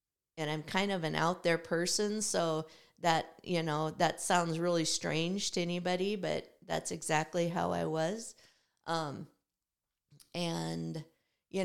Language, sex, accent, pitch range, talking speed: English, female, American, 165-190 Hz, 140 wpm